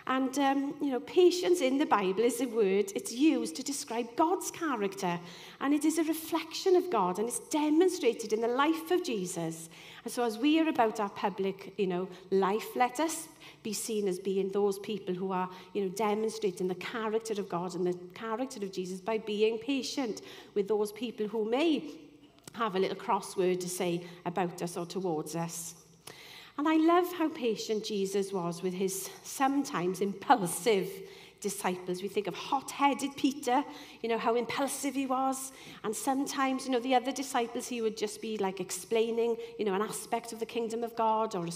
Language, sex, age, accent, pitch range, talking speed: English, female, 40-59, British, 195-270 Hz, 190 wpm